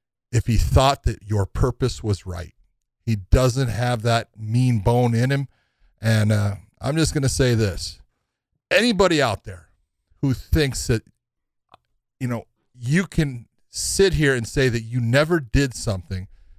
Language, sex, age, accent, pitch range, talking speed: English, male, 40-59, American, 105-145 Hz, 155 wpm